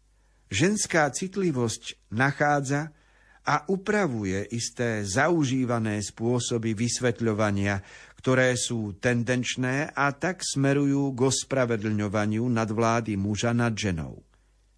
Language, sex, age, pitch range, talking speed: Slovak, male, 50-69, 110-145 Hz, 85 wpm